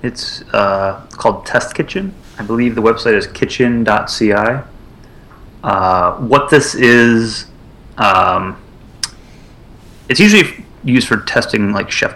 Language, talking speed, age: English, 110 wpm, 30-49